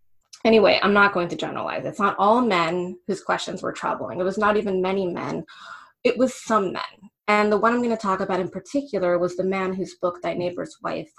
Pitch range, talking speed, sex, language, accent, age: 175-200 Hz, 225 wpm, female, English, American, 20-39